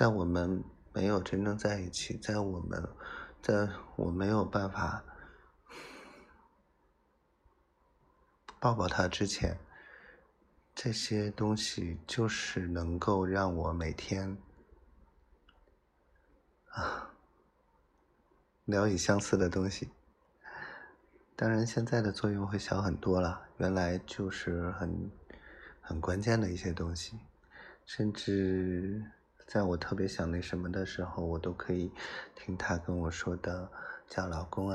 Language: Chinese